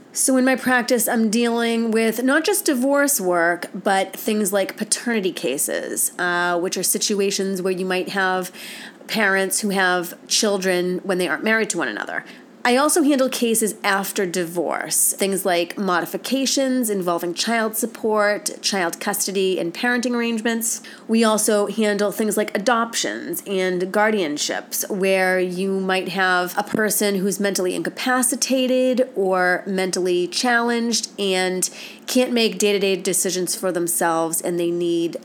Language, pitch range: English, 185-225 Hz